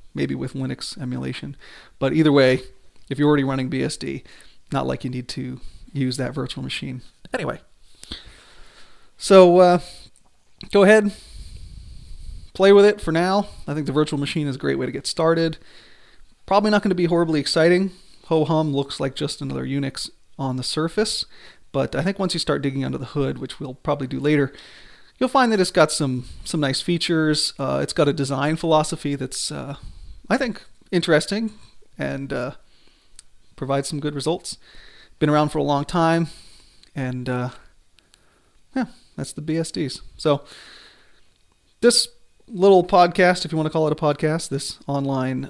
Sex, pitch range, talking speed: male, 130-165 Hz, 165 wpm